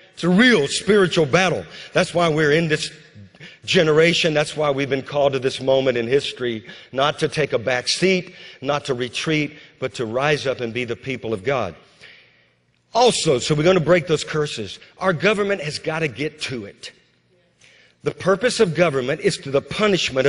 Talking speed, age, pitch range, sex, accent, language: 190 wpm, 50-69, 135-180 Hz, male, American, English